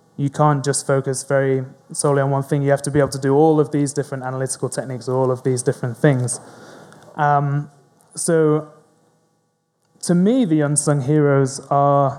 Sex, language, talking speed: male, English, 170 wpm